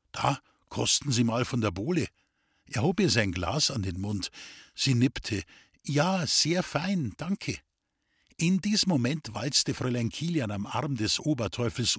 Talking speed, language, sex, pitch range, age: 155 wpm, German, male, 115-155 Hz, 50-69